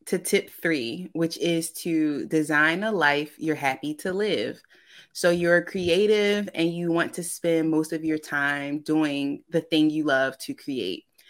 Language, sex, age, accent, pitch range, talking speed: English, female, 20-39, American, 150-175 Hz, 170 wpm